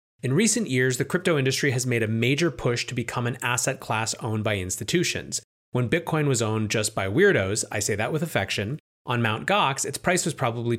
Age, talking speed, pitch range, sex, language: 30-49, 210 wpm, 110-145 Hz, male, English